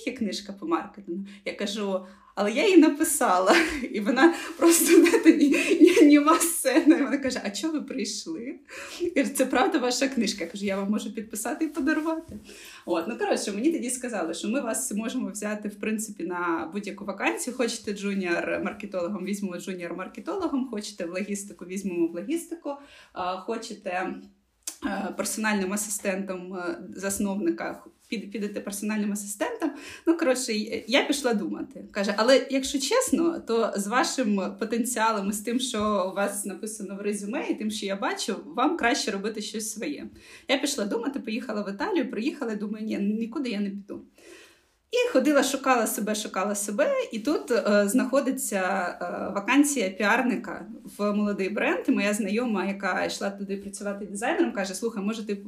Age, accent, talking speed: 20-39, native, 155 wpm